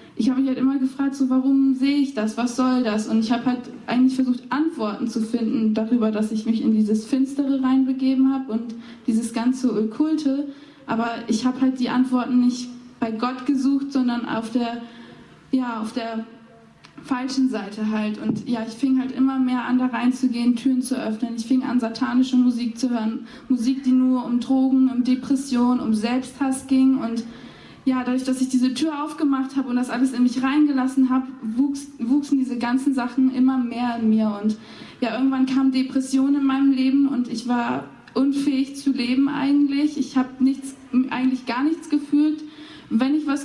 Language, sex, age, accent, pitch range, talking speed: German, female, 20-39, German, 240-265 Hz, 185 wpm